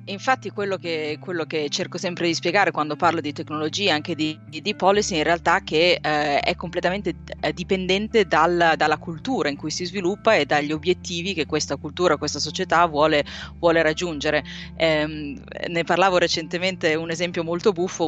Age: 30-49